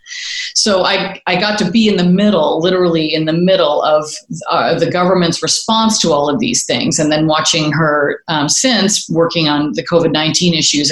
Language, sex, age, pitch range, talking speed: English, female, 30-49, 160-215 Hz, 185 wpm